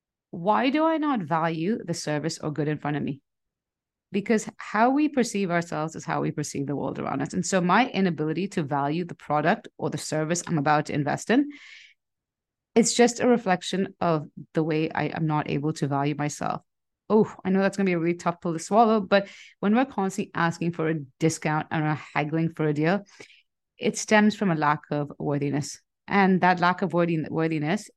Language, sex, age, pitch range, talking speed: English, female, 30-49, 155-200 Hz, 200 wpm